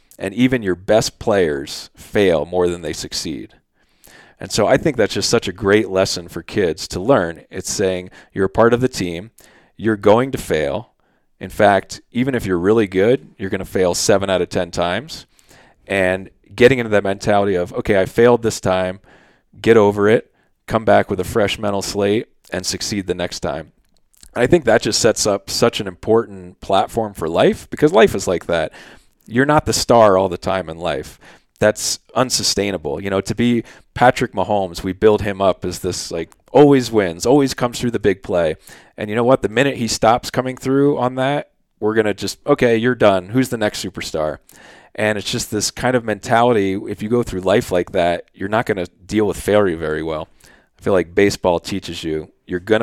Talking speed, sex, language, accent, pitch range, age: 205 wpm, male, English, American, 95-120 Hz, 30-49